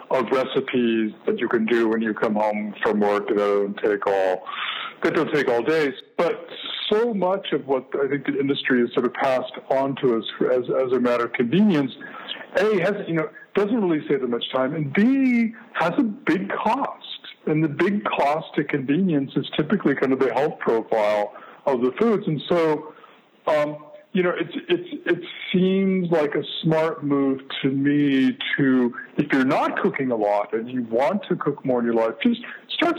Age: 60-79